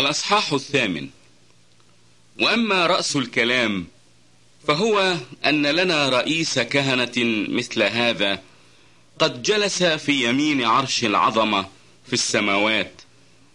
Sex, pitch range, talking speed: male, 120-170 Hz, 90 wpm